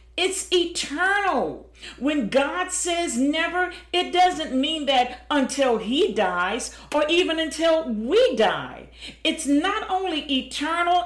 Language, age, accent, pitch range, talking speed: English, 50-69, American, 225-315 Hz, 120 wpm